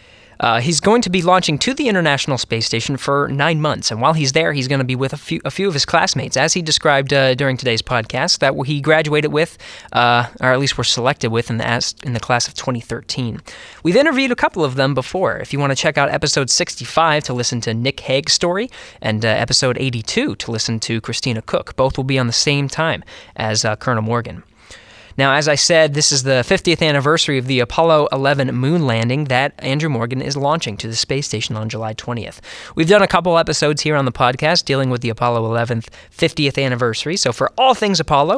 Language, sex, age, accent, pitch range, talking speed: English, male, 20-39, American, 120-155 Hz, 220 wpm